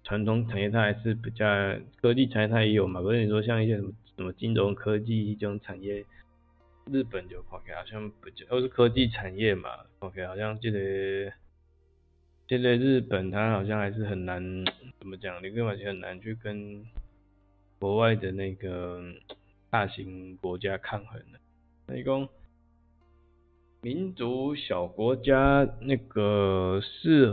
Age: 20-39